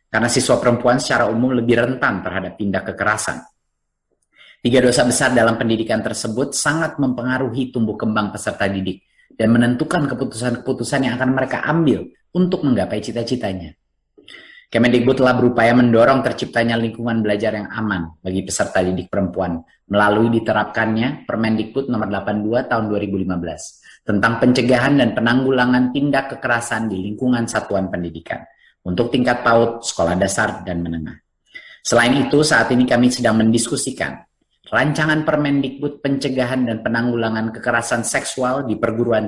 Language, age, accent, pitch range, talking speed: Indonesian, 30-49, native, 105-130 Hz, 130 wpm